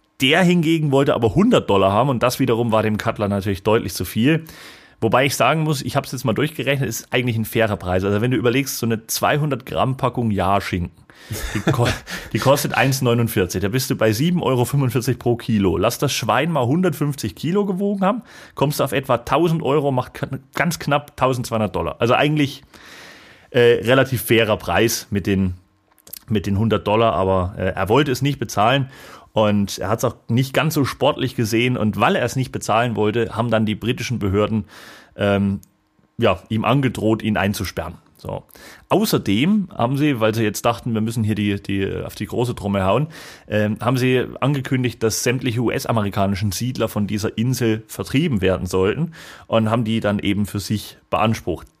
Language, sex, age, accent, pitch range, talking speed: German, male, 30-49, German, 105-135 Hz, 185 wpm